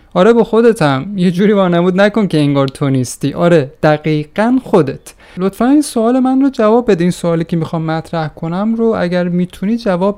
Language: Persian